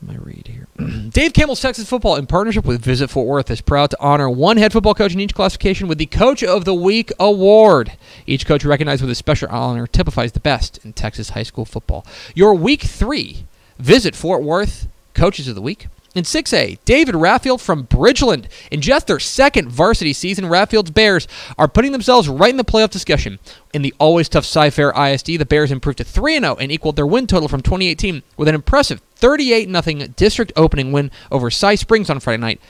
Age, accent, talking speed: 30-49, American, 200 wpm